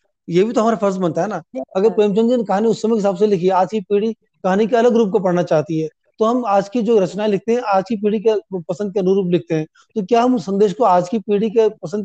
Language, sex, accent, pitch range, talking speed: Hindi, male, native, 190-220 Hz, 290 wpm